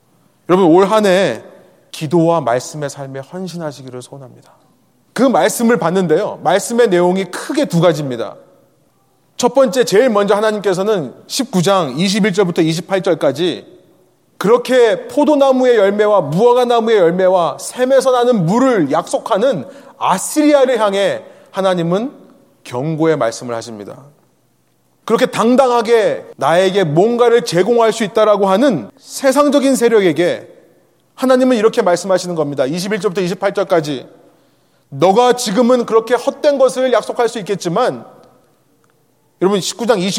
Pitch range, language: 175-250 Hz, Korean